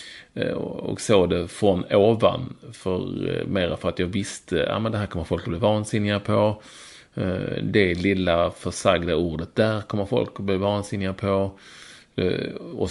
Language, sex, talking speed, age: English, male, 160 wpm, 30-49